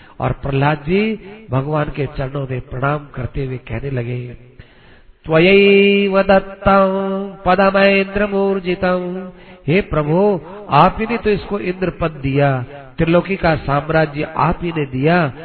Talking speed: 130 wpm